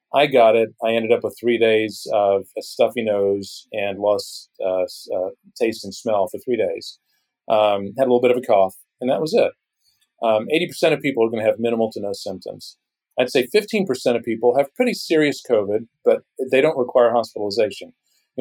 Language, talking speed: English, 200 wpm